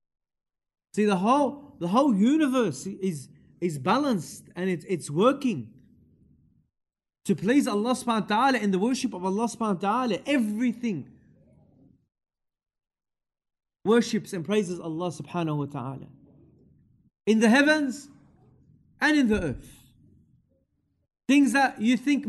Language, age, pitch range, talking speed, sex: English, 30-49, 205-270 Hz, 125 wpm, male